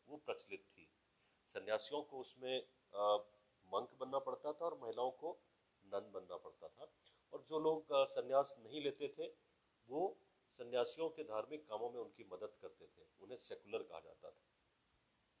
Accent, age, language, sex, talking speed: native, 50-69, Hindi, male, 160 wpm